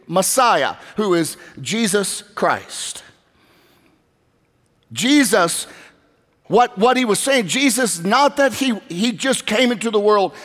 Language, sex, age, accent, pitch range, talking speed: English, male, 50-69, American, 175-250 Hz, 120 wpm